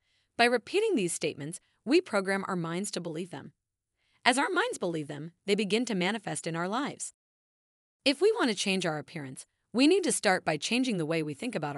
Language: English